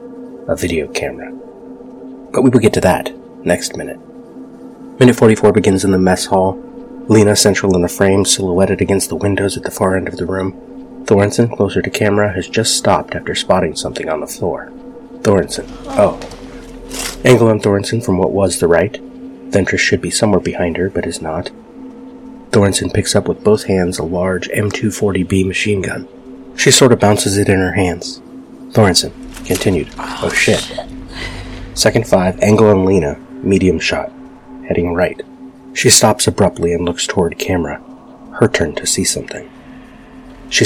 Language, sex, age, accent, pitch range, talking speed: English, male, 30-49, American, 90-130 Hz, 165 wpm